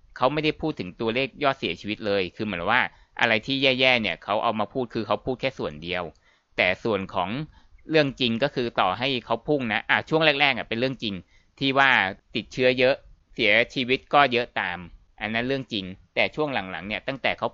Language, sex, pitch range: Thai, male, 105-135 Hz